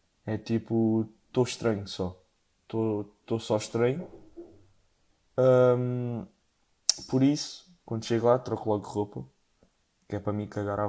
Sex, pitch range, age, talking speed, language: male, 105-120 Hz, 20-39, 140 wpm, Portuguese